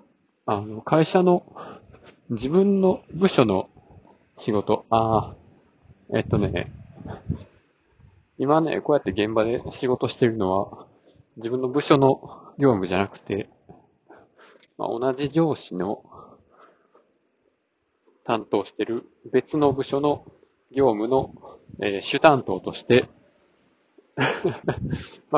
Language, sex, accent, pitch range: Japanese, male, native, 110-135 Hz